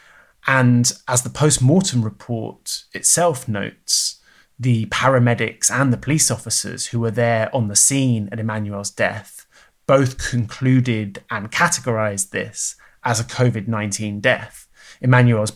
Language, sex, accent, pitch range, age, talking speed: English, male, British, 110-130 Hz, 20-39, 125 wpm